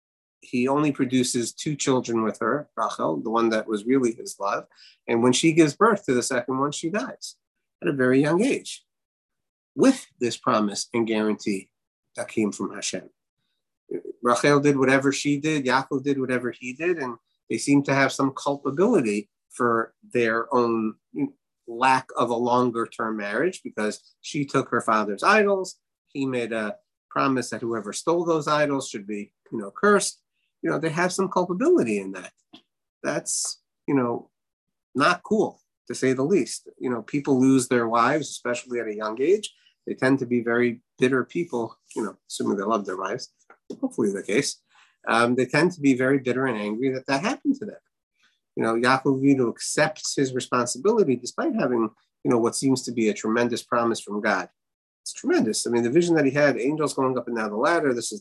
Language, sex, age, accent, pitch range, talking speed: English, male, 30-49, American, 115-145 Hz, 190 wpm